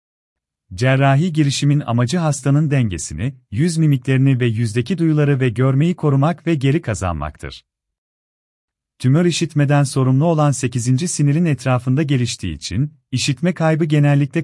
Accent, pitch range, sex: native, 90-150 Hz, male